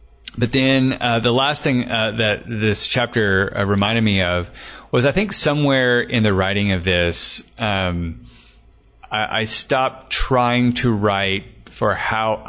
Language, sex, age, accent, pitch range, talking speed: English, male, 30-49, American, 95-120 Hz, 155 wpm